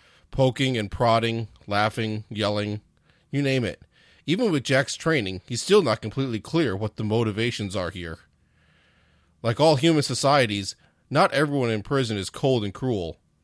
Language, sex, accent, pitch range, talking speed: English, male, American, 100-130 Hz, 150 wpm